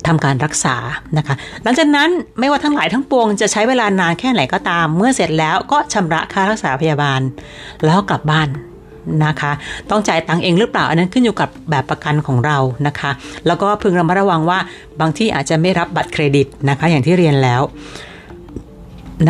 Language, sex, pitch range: Thai, female, 150-195 Hz